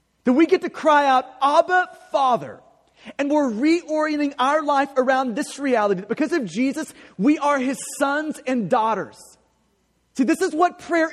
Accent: American